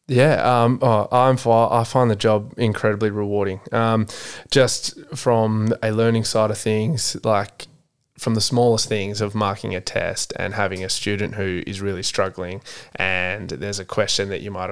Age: 20-39